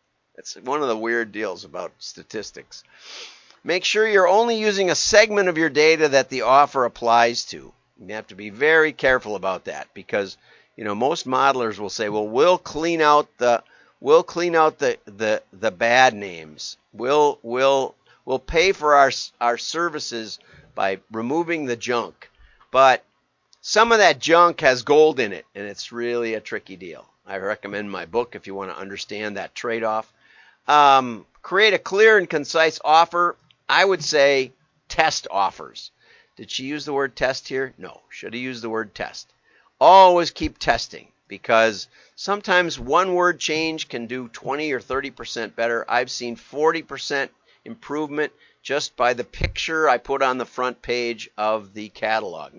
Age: 50-69